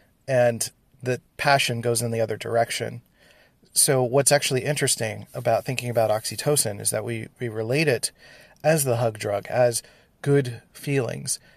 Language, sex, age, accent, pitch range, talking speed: English, male, 30-49, American, 115-135 Hz, 150 wpm